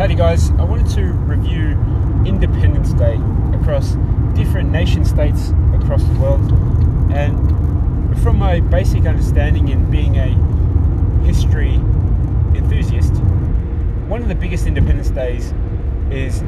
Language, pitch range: English, 85-95 Hz